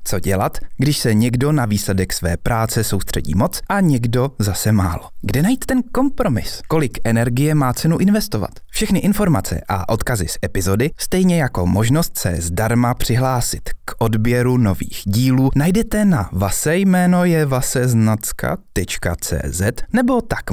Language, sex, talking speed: Czech, male, 140 wpm